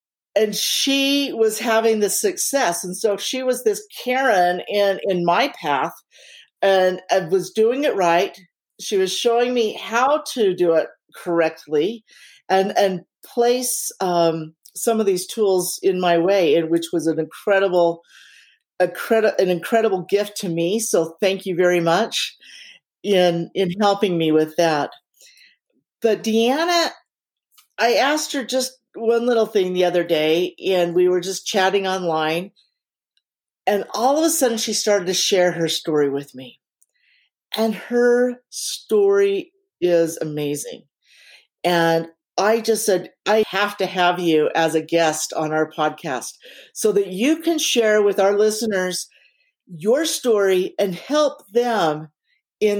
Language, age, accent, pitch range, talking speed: English, 50-69, American, 175-235 Hz, 145 wpm